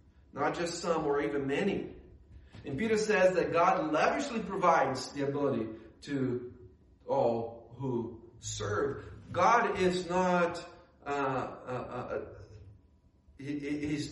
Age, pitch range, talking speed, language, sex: 40-59, 120-155 Hz, 90 wpm, English, male